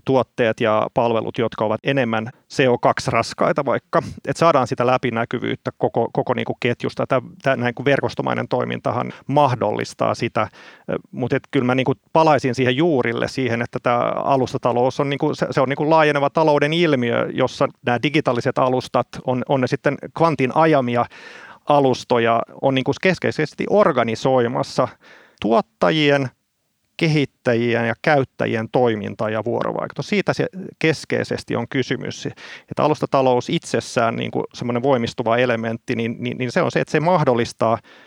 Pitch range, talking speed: 120-145 Hz, 145 wpm